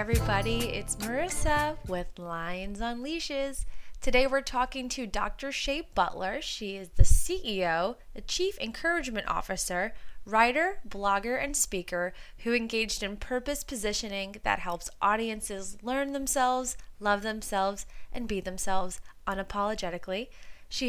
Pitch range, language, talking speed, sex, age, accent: 190-250 Hz, English, 125 wpm, female, 20-39, American